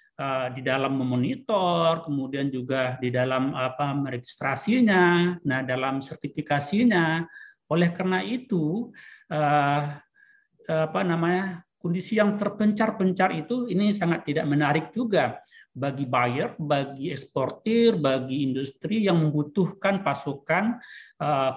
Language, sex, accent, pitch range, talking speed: Indonesian, male, native, 140-185 Hz, 105 wpm